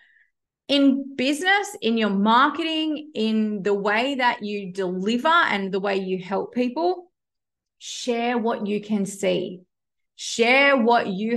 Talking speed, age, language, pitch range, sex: 130 wpm, 30-49, English, 190-250 Hz, female